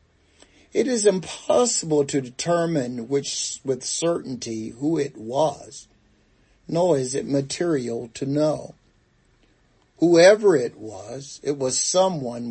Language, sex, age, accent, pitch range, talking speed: English, male, 60-79, American, 125-170 Hz, 105 wpm